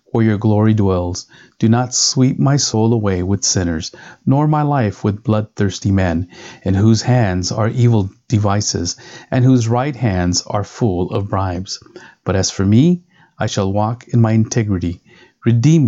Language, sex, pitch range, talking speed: English, male, 95-120 Hz, 160 wpm